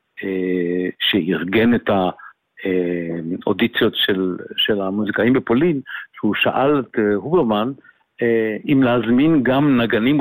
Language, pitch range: Hebrew, 100-135 Hz